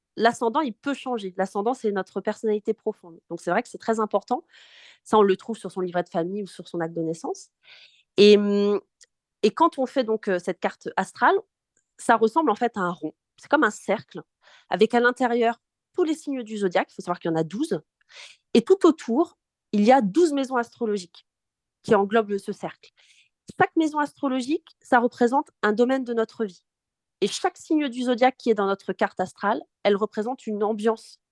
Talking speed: 205 wpm